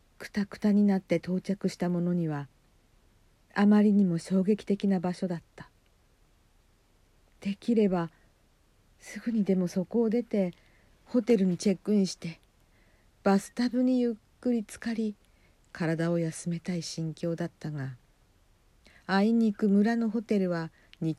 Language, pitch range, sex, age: Japanese, 135-205 Hz, female, 50-69